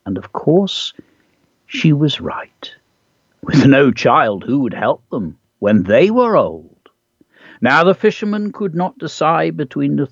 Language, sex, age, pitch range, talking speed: English, male, 60-79, 135-210 Hz, 150 wpm